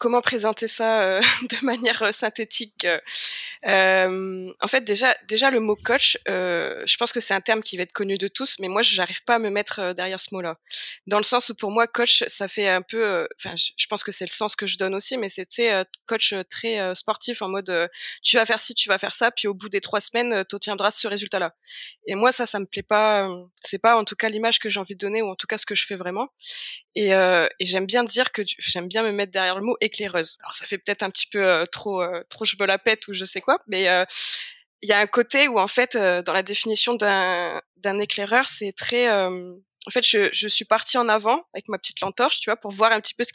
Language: French